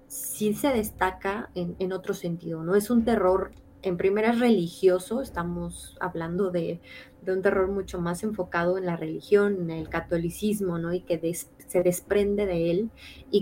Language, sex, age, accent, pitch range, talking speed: Spanish, female, 20-39, Mexican, 170-195 Hz, 170 wpm